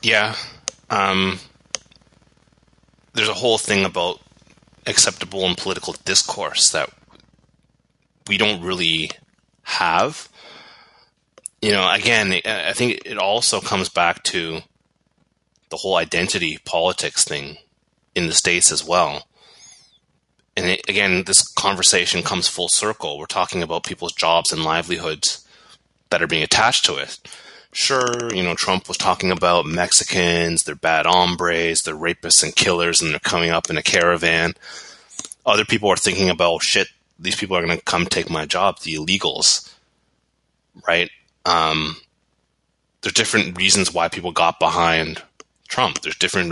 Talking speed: 140 wpm